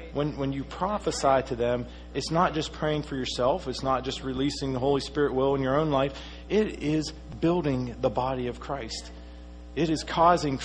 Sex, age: male, 40-59